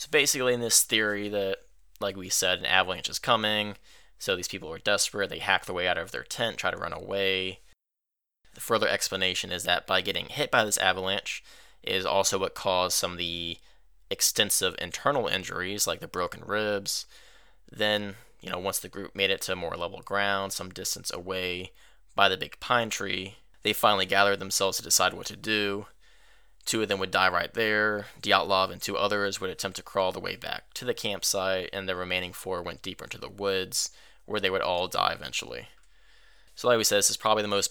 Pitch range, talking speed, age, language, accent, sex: 95-105 Hz, 205 wpm, 20-39, English, American, male